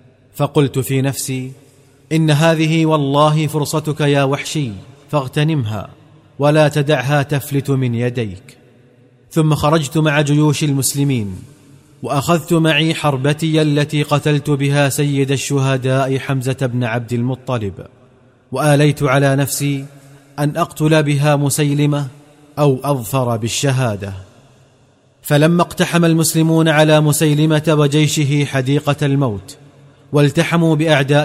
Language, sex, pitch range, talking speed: Arabic, male, 135-155 Hz, 100 wpm